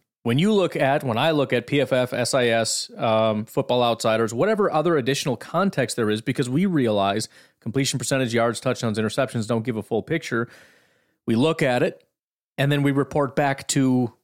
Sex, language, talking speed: male, English, 175 wpm